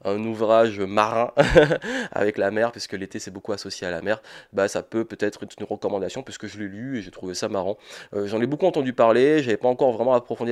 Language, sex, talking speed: French, male, 240 wpm